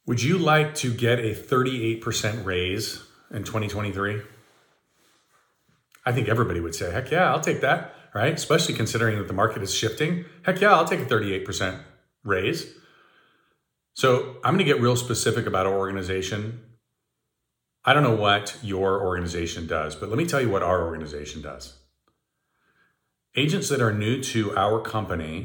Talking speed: 160 wpm